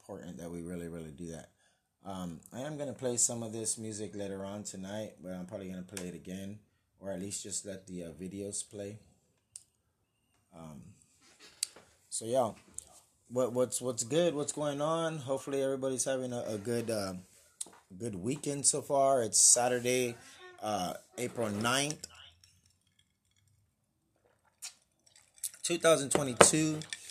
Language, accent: English, American